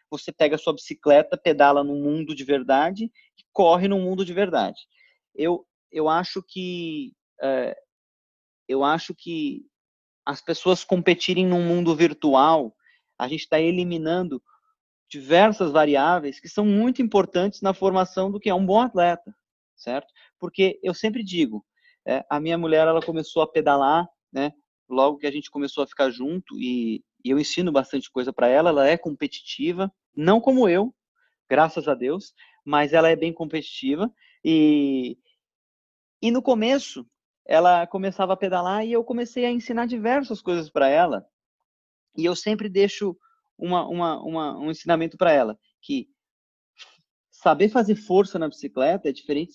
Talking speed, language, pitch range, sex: 155 wpm, Portuguese, 155-215 Hz, male